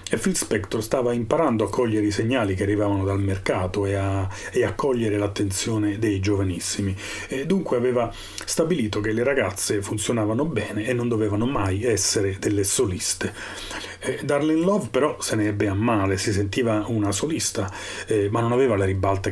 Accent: native